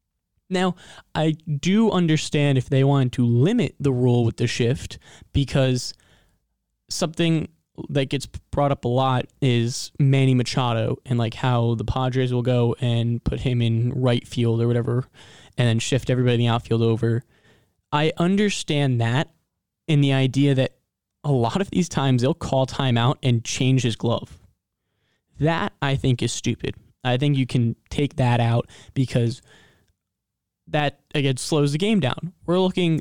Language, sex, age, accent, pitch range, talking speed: English, male, 20-39, American, 120-150 Hz, 160 wpm